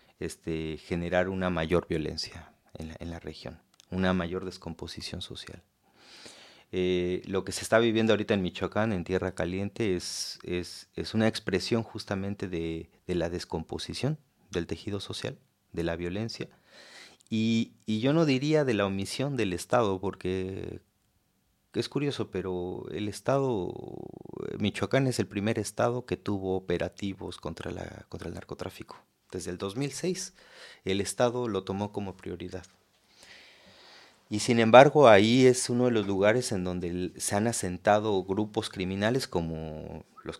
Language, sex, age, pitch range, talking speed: German, male, 30-49, 90-110 Hz, 140 wpm